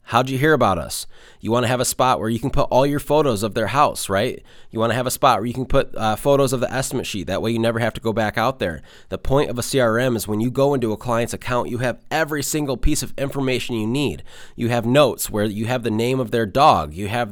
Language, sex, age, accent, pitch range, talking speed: English, male, 20-39, American, 110-130 Hz, 280 wpm